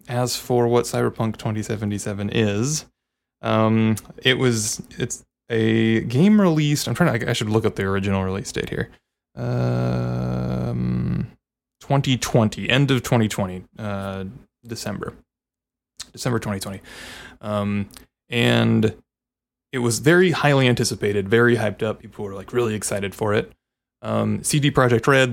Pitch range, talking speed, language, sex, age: 100-125 Hz, 130 wpm, English, male, 20-39